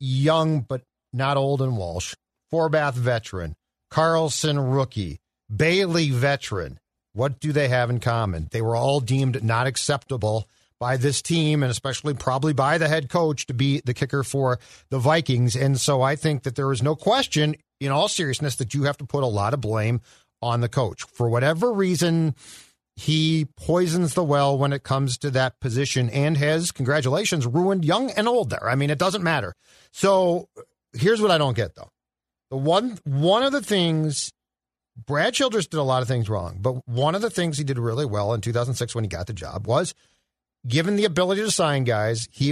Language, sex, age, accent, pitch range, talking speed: English, male, 50-69, American, 120-155 Hz, 190 wpm